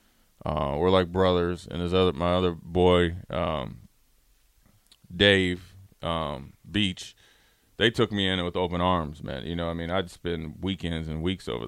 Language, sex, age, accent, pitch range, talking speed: English, male, 20-39, American, 90-105 Hz, 165 wpm